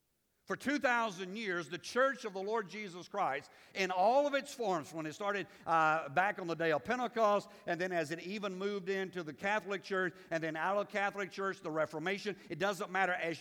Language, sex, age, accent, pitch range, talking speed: English, male, 50-69, American, 170-220 Hz, 210 wpm